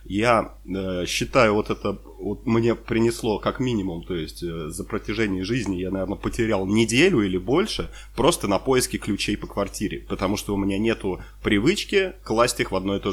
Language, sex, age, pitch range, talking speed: Ukrainian, male, 30-49, 95-115 Hz, 185 wpm